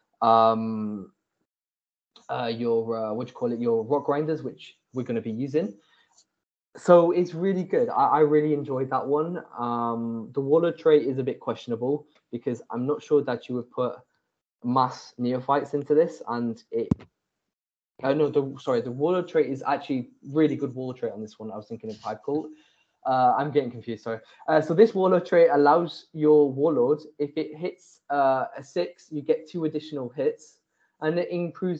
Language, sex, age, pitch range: English, male, 20-39, 120-155 Hz